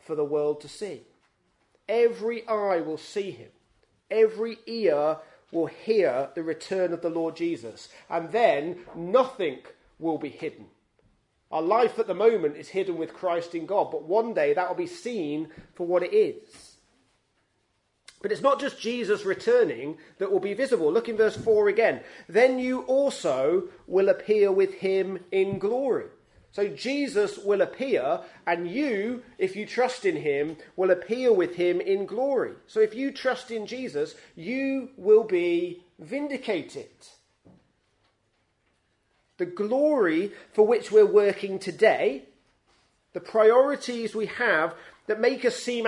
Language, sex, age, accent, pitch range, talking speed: English, male, 30-49, British, 180-275 Hz, 150 wpm